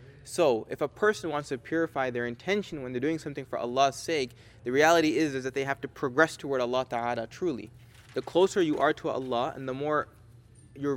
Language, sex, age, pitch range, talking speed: English, male, 20-39, 120-155 Hz, 215 wpm